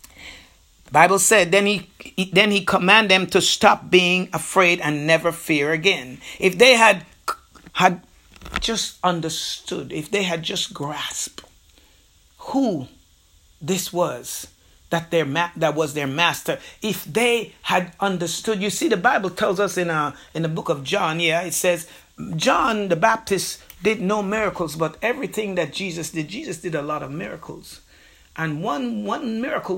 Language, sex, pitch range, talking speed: English, male, 165-215 Hz, 155 wpm